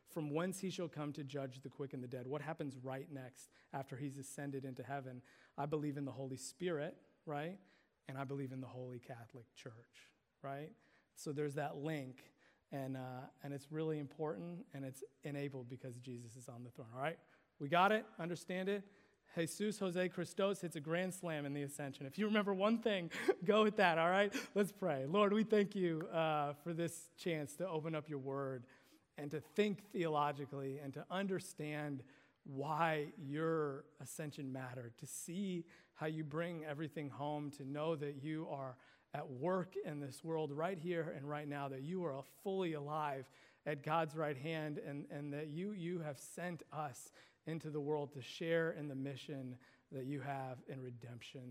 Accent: American